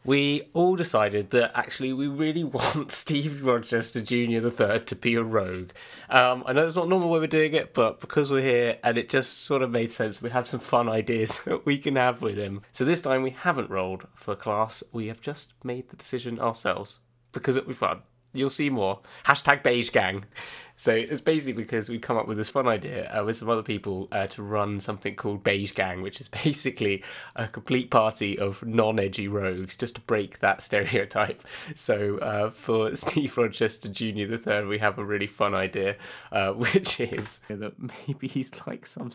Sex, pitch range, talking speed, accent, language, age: male, 110-130 Hz, 200 wpm, British, English, 20-39